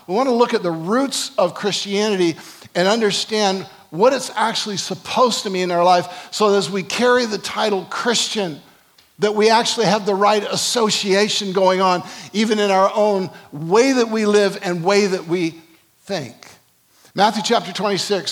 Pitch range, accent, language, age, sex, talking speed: 180-215 Hz, American, English, 50-69, male, 165 wpm